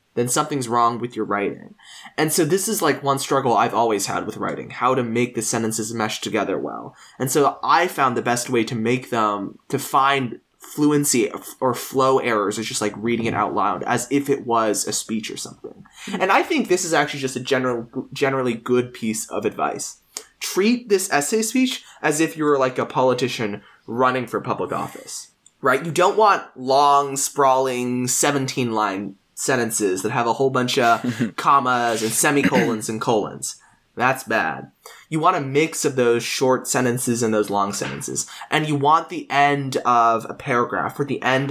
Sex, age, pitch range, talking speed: male, 20-39, 115-145 Hz, 185 wpm